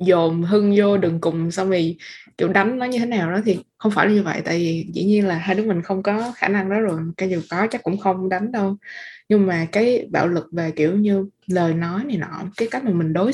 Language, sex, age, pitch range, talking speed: Vietnamese, female, 20-39, 170-210 Hz, 260 wpm